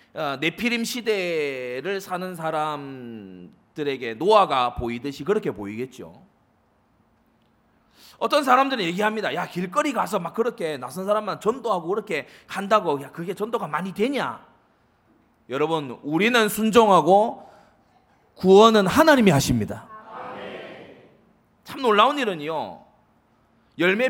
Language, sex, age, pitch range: Korean, male, 30-49, 155-235 Hz